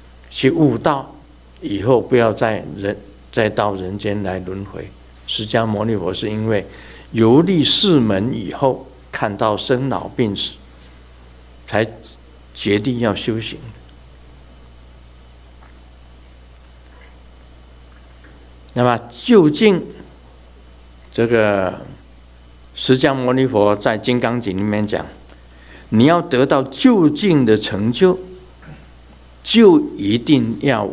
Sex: male